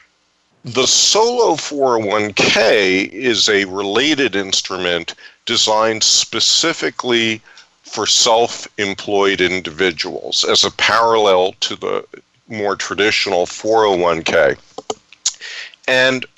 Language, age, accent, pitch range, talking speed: English, 50-69, American, 95-125 Hz, 75 wpm